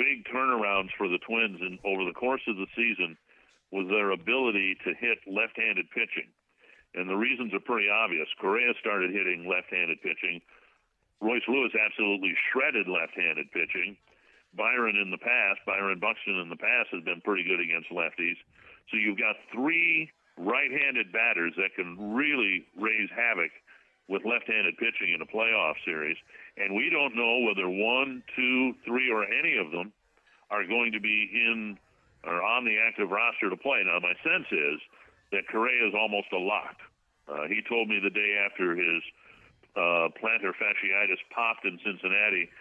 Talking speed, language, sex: 165 wpm, English, male